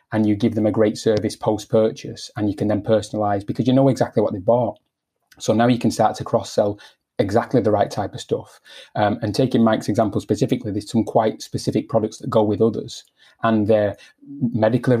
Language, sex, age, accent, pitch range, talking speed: English, male, 30-49, British, 105-115 Hz, 205 wpm